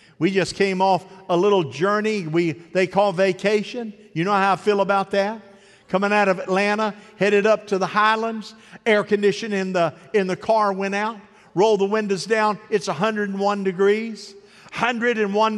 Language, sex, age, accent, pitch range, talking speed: English, male, 50-69, American, 195-225 Hz, 170 wpm